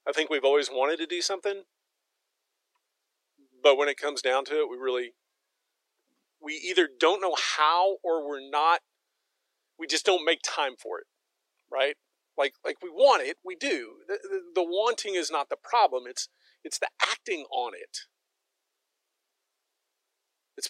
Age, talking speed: 40-59, 160 wpm